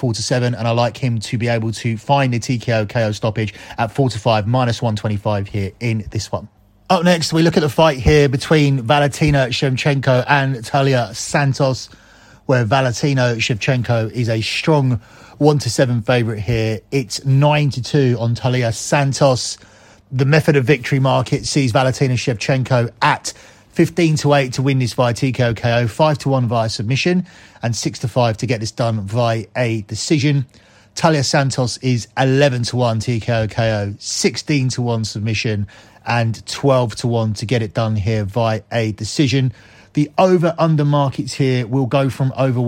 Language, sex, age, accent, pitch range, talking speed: English, male, 30-49, British, 115-140 Hz, 165 wpm